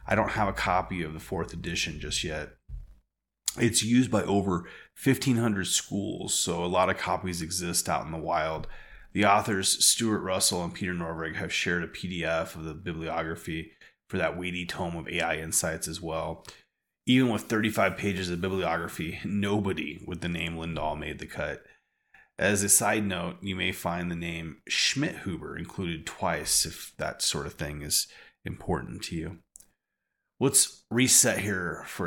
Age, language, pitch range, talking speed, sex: 30-49, English, 80-100 Hz, 170 wpm, male